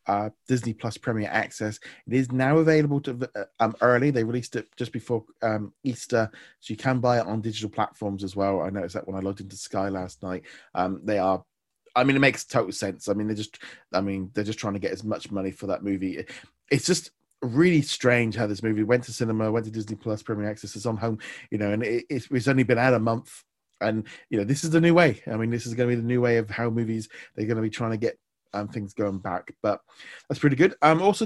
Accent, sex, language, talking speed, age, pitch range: British, male, English, 255 wpm, 30-49, 110-140 Hz